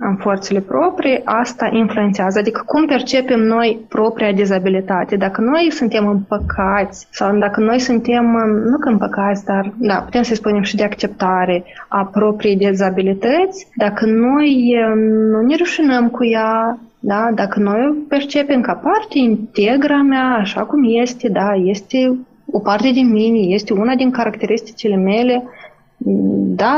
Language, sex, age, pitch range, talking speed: Romanian, female, 20-39, 205-250 Hz, 145 wpm